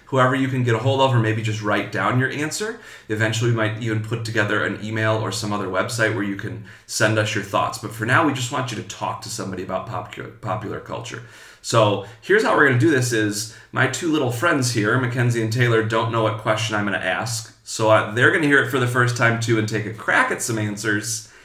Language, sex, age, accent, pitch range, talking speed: English, male, 30-49, American, 105-125 Hz, 255 wpm